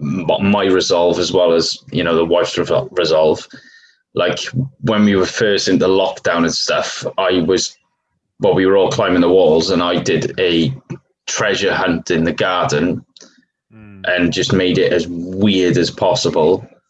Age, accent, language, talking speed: 20-39, British, English, 165 wpm